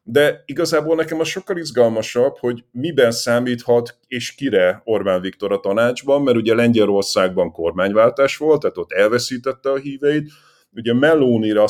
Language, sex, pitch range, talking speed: Hungarian, male, 100-130 Hz, 140 wpm